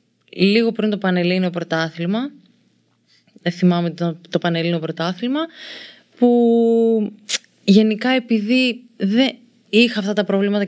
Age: 20-39